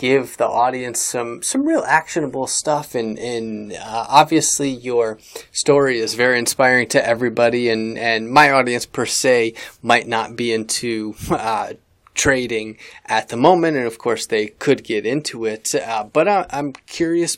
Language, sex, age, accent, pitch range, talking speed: English, male, 30-49, American, 115-145 Hz, 165 wpm